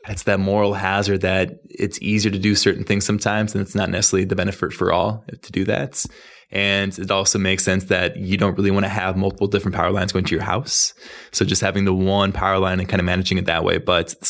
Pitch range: 95-105 Hz